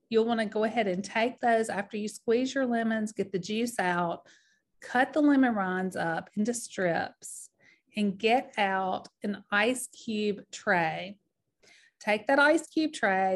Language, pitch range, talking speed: English, 195-260 Hz, 160 wpm